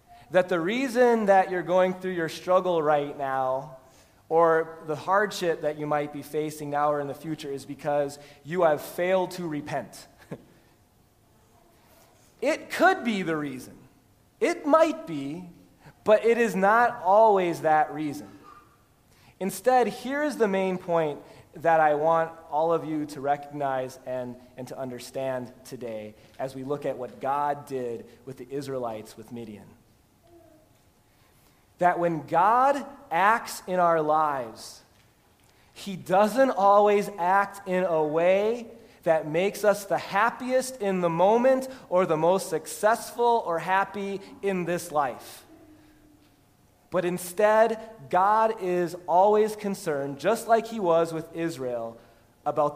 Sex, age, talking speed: male, 30-49, 140 wpm